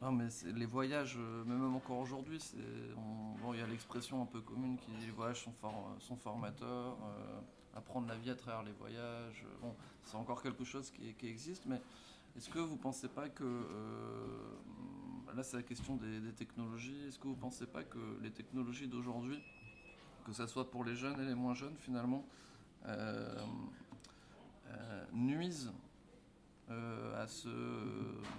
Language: French